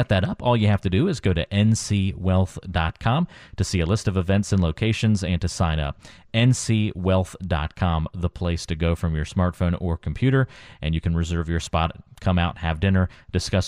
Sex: male